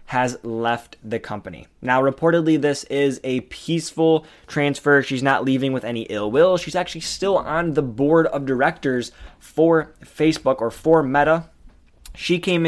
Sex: male